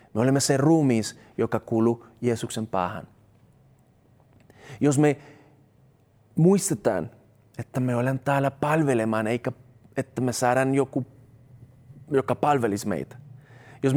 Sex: male